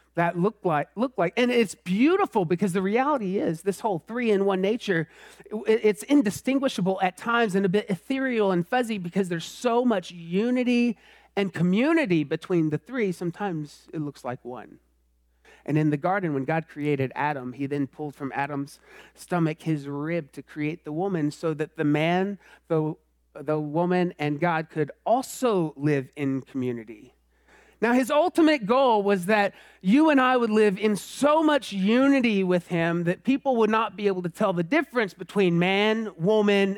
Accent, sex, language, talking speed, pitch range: American, male, English, 175 wpm, 155-220 Hz